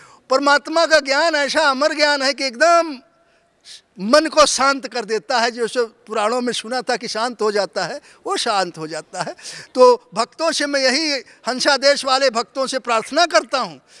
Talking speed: 180 wpm